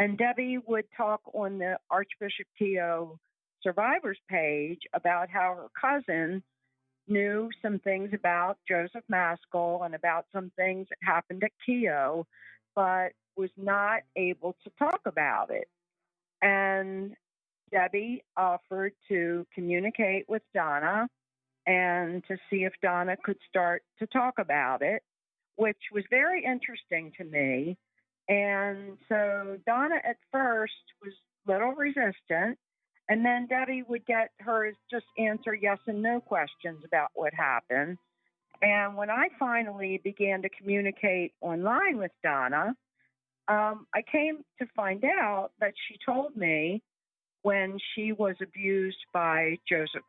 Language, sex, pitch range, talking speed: English, female, 175-220 Hz, 130 wpm